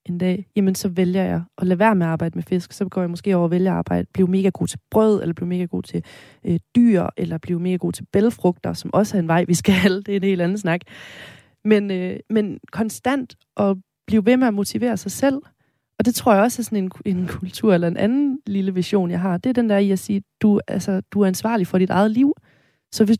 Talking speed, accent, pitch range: 265 wpm, native, 180-215 Hz